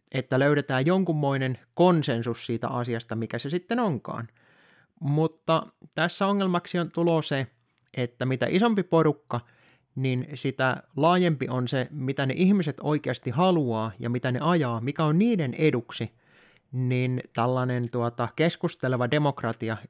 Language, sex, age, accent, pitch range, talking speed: Finnish, male, 30-49, native, 120-170 Hz, 125 wpm